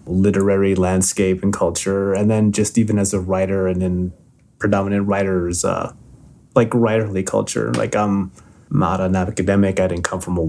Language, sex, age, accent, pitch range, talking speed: English, male, 30-49, American, 85-100 Hz, 165 wpm